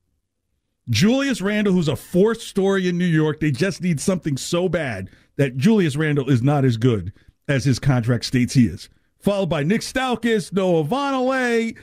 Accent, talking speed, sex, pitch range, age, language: American, 170 wpm, male, 120-200 Hz, 50-69, English